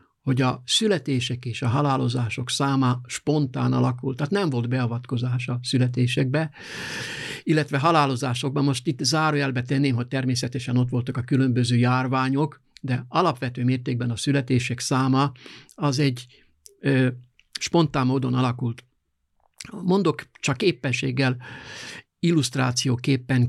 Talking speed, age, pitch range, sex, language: 110 wpm, 60-79, 125-145 Hz, male, Hungarian